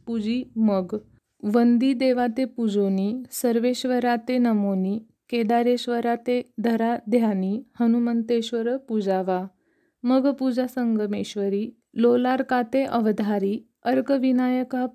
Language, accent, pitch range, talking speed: Marathi, native, 215-255 Hz, 90 wpm